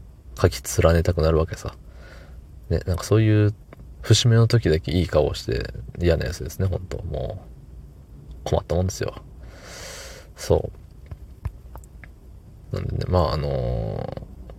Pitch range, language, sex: 80-100 Hz, Japanese, male